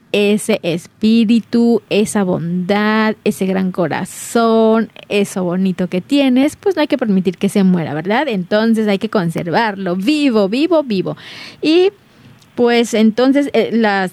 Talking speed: 130 wpm